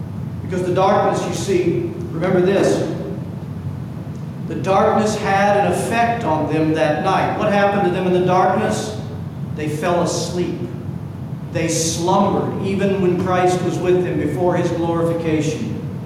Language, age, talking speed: English, 50-69, 140 wpm